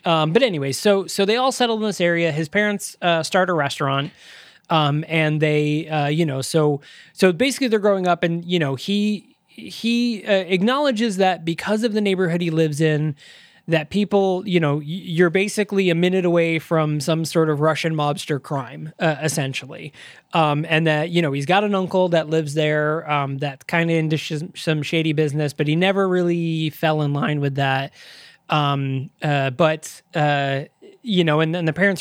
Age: 20-39